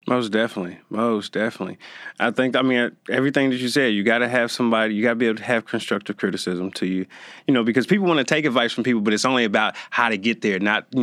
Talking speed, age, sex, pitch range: 260 wpm, 30-49, male, 110-150 Hz